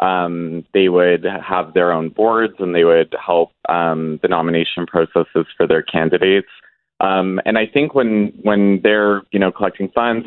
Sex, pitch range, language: male, 90-105 Hz, English